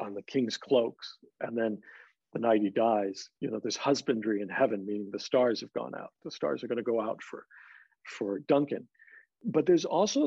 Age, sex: 50-69, male